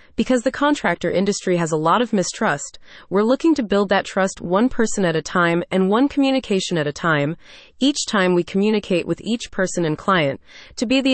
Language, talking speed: English, 205 wpm